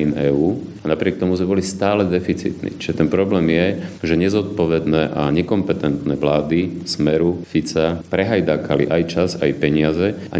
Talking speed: 150 wpm